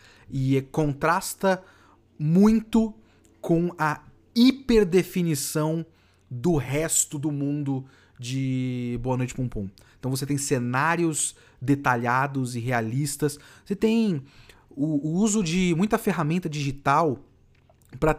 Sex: male